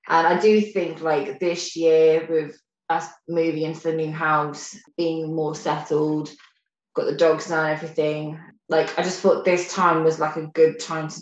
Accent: British